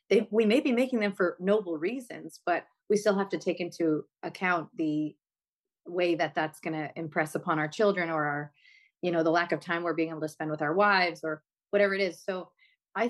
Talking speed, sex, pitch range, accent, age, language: 220 wpm, female, 160-195 Hz, American, 30-49, English